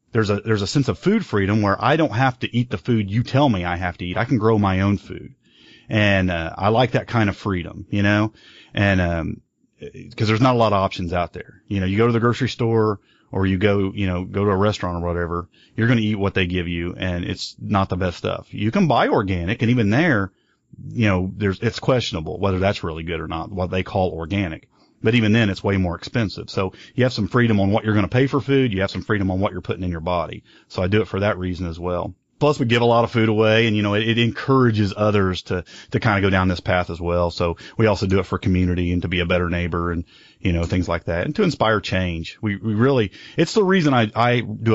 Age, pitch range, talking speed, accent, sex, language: 30-49, 90-115 Hz, 270 wpm, American, male, English